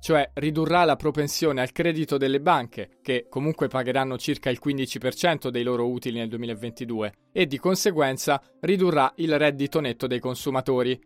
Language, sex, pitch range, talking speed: Italian, male, 130-160 Hz, 150 wpm